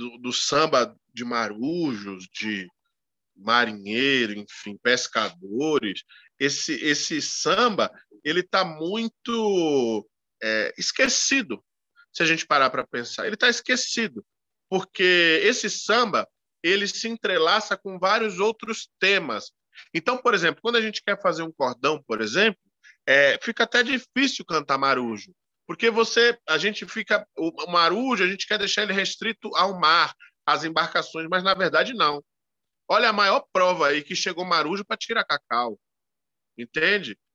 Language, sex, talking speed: Portuguese, male, 140 wpm